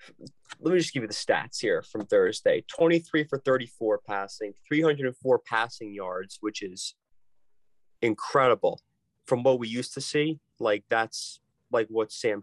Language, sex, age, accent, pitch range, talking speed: English, male, 30-49, American, 105-140 Hz, 150 wpm